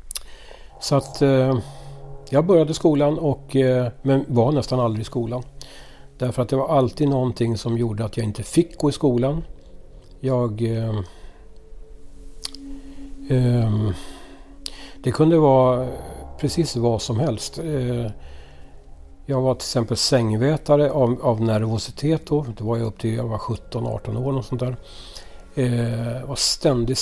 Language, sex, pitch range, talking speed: Swedish, male, 115-140 Hz, 140 wpm